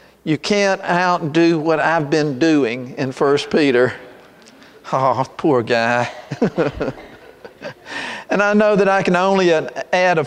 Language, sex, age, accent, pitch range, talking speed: English, male, 50-69, American, 150-180 Hz, 130 wpm